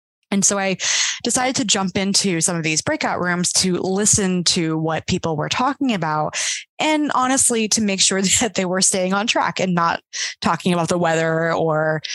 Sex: female